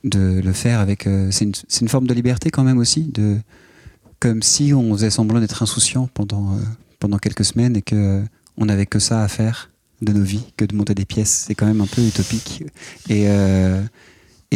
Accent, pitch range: French, 100-120 Hz